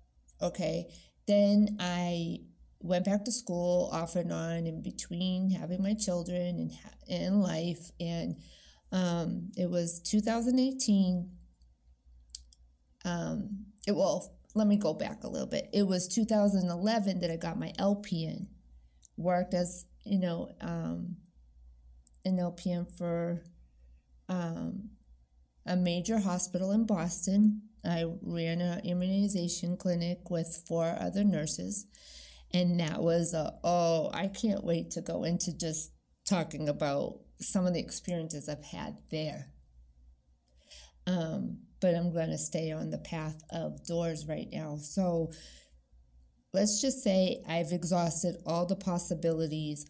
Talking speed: 125 wpm